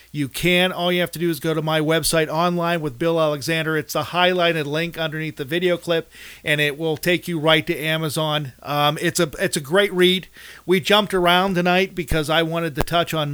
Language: English